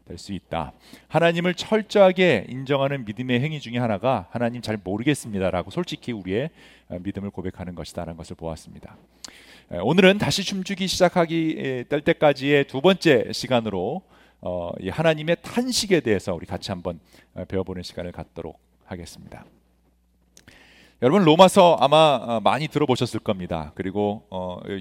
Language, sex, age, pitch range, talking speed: English, male, 40-59, 95-145 Hz, 110 wpm